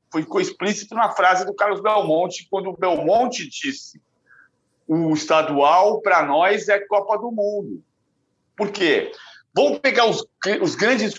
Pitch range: 200-250 Hz